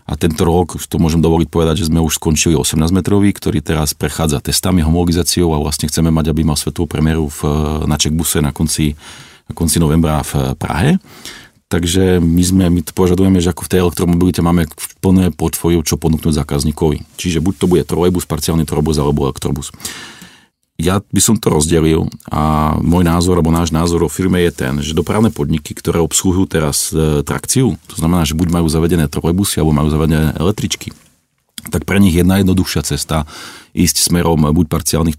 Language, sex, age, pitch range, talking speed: Czech, male, 40-59, 75-90 Hz, 175 wpm